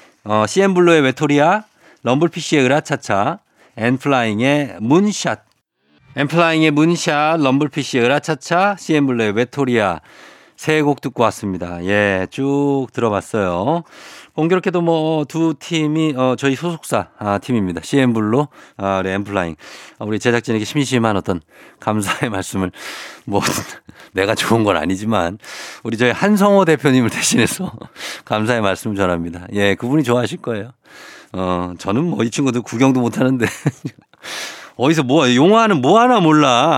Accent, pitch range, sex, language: native, 110-160 Hz, male, Korean